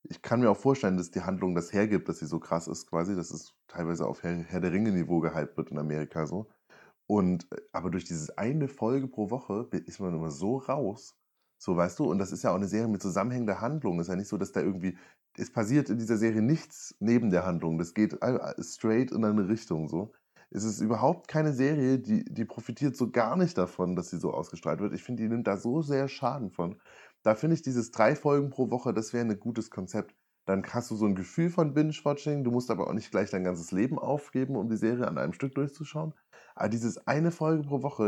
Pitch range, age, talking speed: 90-130 Hz, 20-39, 235 wpm